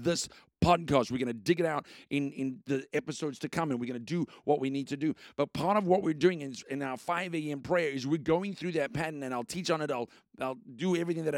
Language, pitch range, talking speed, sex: English, 140-175 Hz, 280 wpm, male